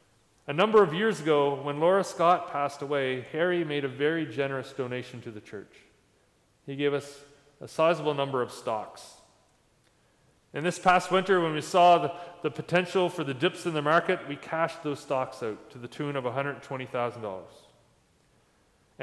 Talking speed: 165 wpm